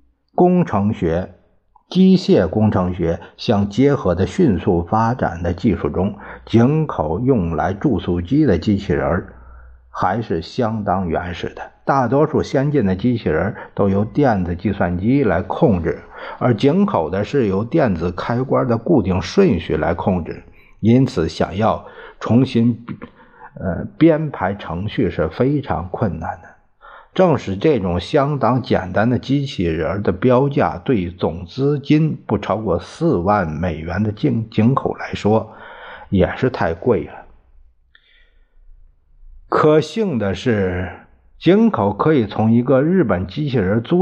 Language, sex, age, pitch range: Chinese, male, 50-69, 90-140 Hz